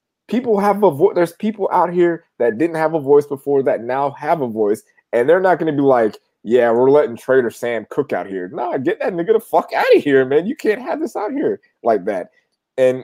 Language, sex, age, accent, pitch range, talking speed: English, male, 20-39, American, 110-155 Hz, 250 wpm